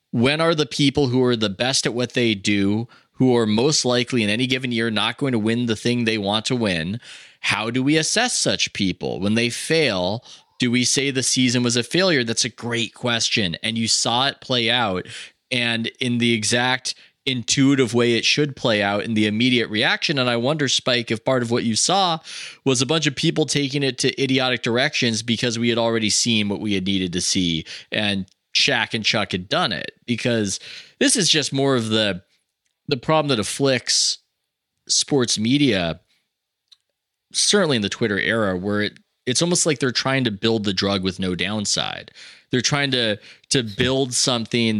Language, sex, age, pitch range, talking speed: English, male, 20-39, 110-135 Hz, 195 wpm